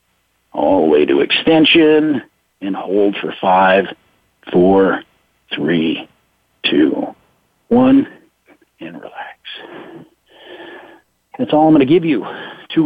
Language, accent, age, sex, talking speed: English, American, 50-69, male, 105 wpm